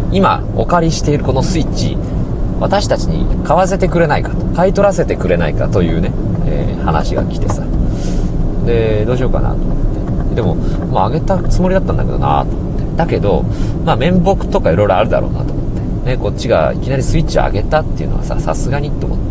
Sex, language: male, Japanese